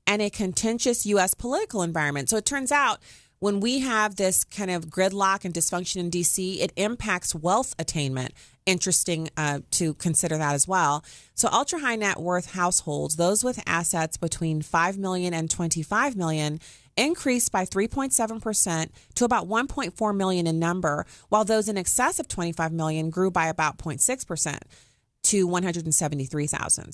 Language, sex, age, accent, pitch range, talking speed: English, female, 30-49, American, 150-195 Hz, 155 wpm